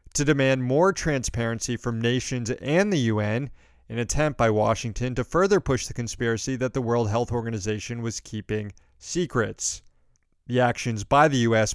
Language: English